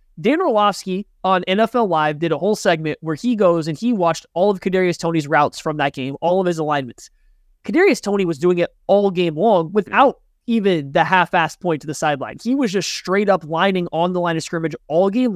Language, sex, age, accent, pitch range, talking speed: English, male, 20-39, American, 165-205 Hz, 220 wpm